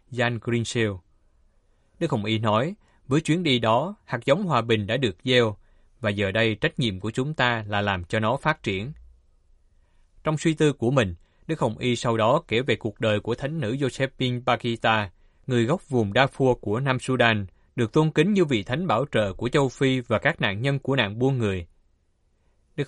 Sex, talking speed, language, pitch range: male, 200 wpm, Vietnamese, 105-135 Hz